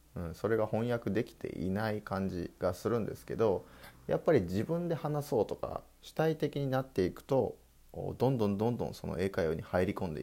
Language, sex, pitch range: Japanese, male, 85-115 Hz